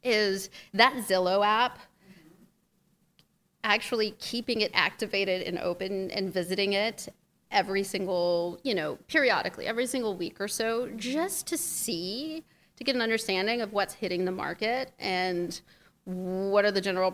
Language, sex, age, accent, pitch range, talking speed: English, female, 30-49, American, 185-220 Hz, 140 wpm